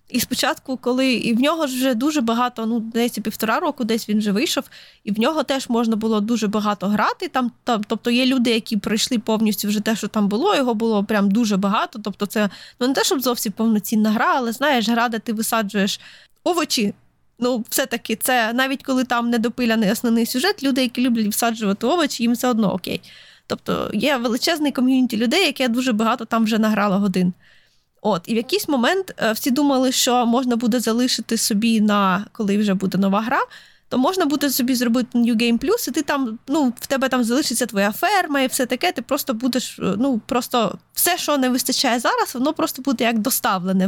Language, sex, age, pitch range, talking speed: Ukrainian, female, 20-39, 220-265 Hz, 195 wpm